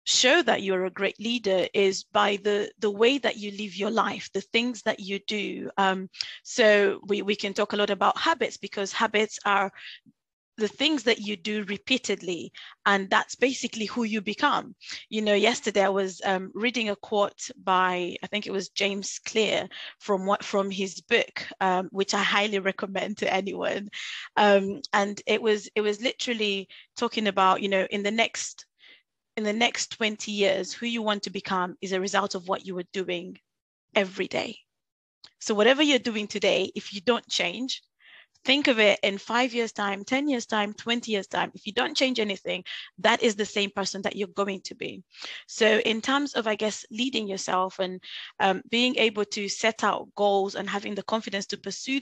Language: English